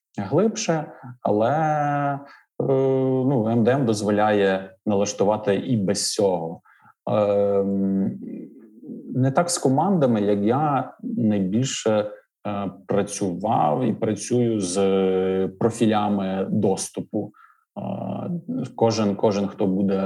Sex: male